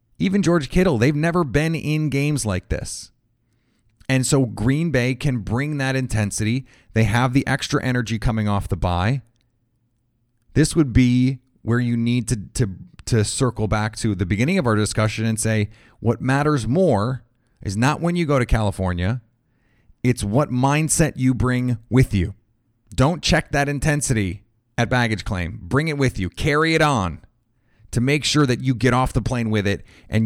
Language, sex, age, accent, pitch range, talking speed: English, male, 30-49, American, 105-130 Hz, 175 wpm